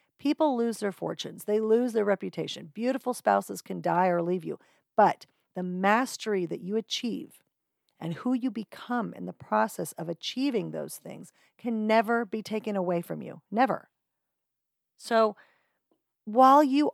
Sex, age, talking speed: female, 40-59, 150 wpm